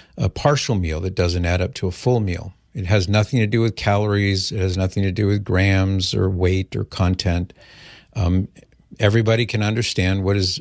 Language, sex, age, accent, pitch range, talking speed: English, male, 50-69, American, 95-110 Hz, 200 wpm